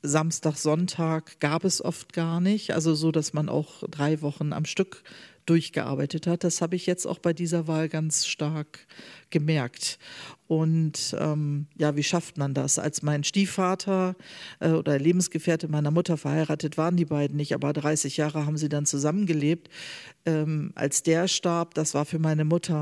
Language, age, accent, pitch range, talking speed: German, 40-59, German, 150-170 Hz, 170 wpm